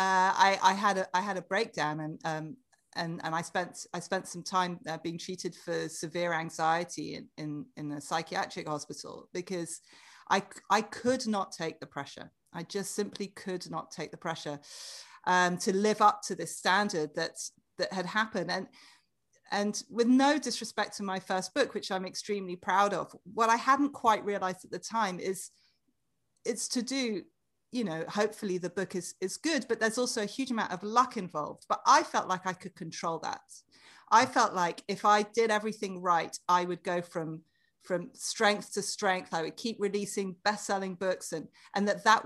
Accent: British